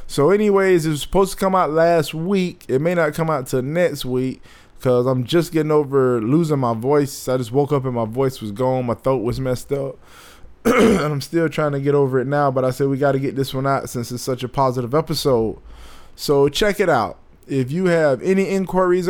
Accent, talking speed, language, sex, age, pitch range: American, 235 wpm, English, male, 20-39, 130-160 Hz